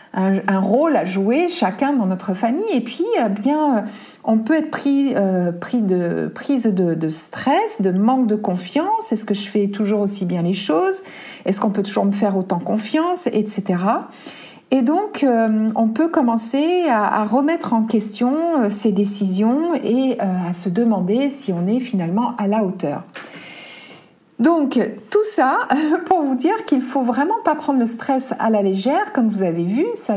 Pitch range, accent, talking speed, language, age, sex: 200-275 Hz, French, 185 wpm, French, 60-79, female